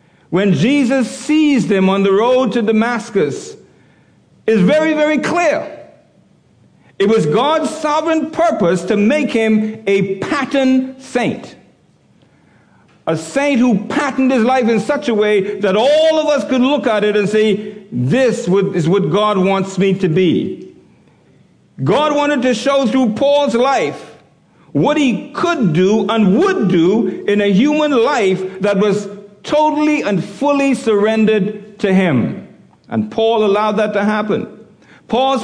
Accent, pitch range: American, 205-275 Hz